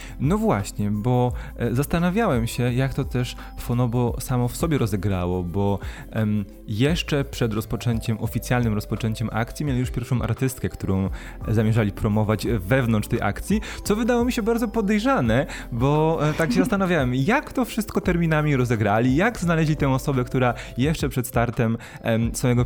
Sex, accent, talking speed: male, native, 145 wpm